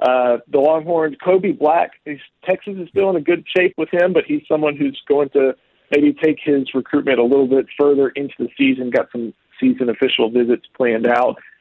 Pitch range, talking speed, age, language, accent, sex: 120-145 Hz, 200 wpm, 40-59, English, American, male